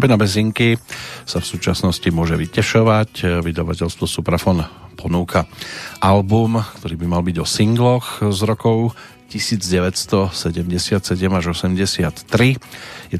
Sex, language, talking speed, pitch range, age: male, Slovak, 100 wpm, 90-110 Hz, 40-59